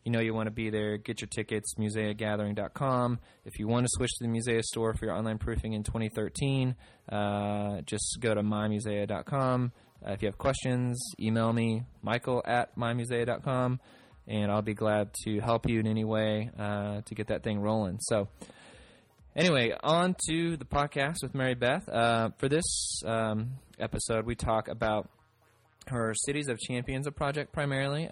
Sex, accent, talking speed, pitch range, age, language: male, American, 175 wpm, 105-120 Hz, 20-39, English